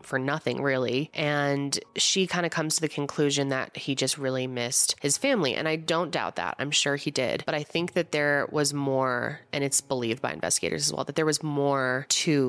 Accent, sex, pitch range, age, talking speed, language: American, female, 135-160 Hz, 20-39, 220 wpm, English